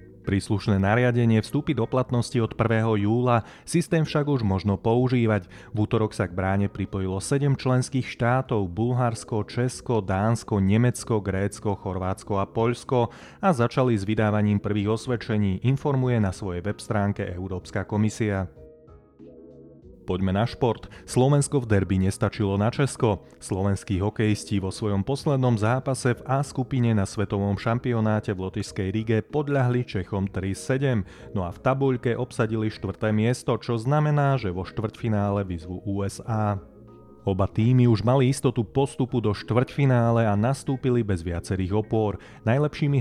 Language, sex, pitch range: Slovak, male, 100-125 Hz